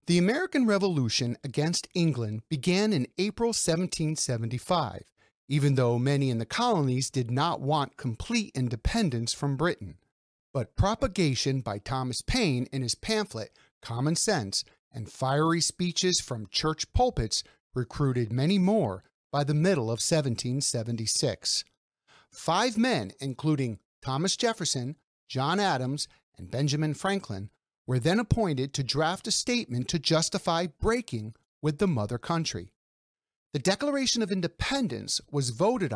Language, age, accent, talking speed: English, 50-69, American, 125 wpm